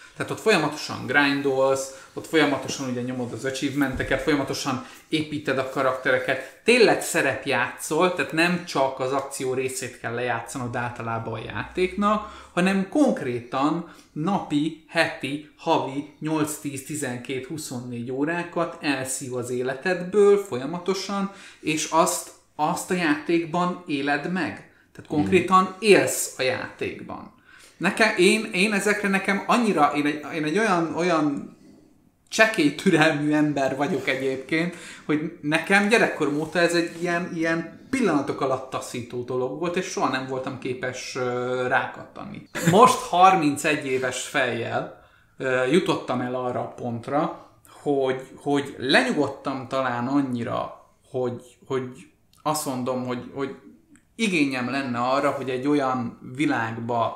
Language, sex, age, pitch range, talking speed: Hungarian, male, 30-49, 130-165 Hz, 120 wpm